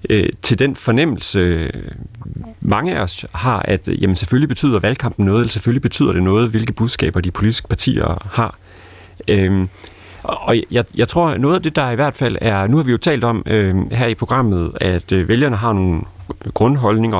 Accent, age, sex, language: native, 30-49, male, Danish